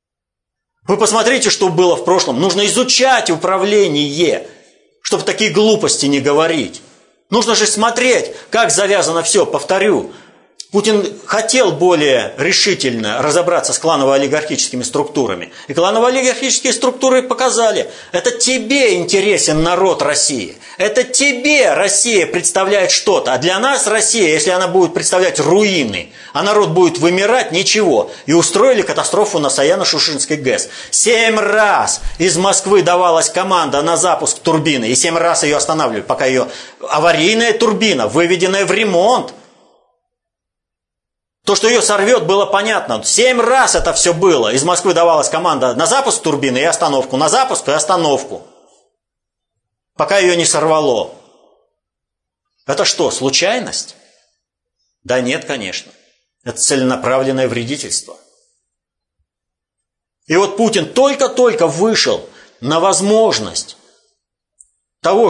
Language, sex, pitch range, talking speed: Russian, male, 165-230 Hz, 120 wpm